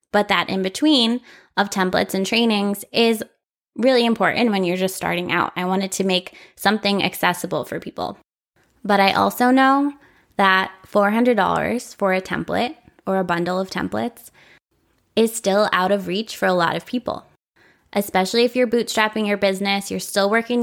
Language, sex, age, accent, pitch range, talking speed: English, female, 20-39, American, 190-230 Hz, 165 wpm